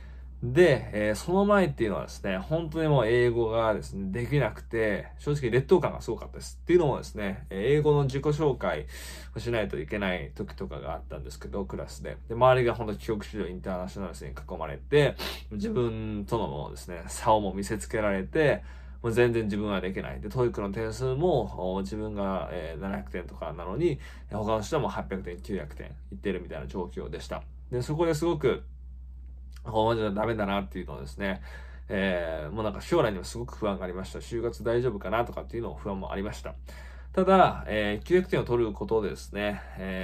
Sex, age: male, 20-39